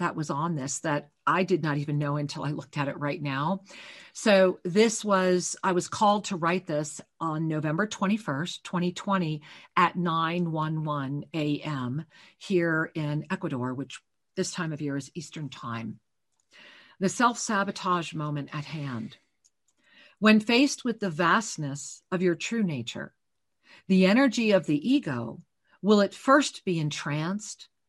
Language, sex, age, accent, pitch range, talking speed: English, female, 50-69, American, 155-215 Hz, 145 wpm